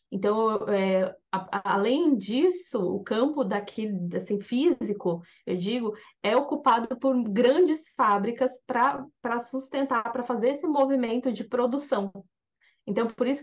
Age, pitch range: 10-29, 195-245 Hz